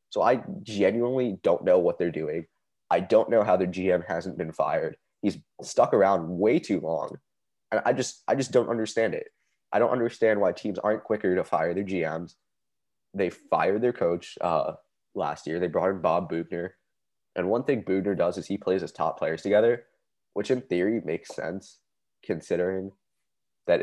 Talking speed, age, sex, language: 185 wpm, 20-39, male, English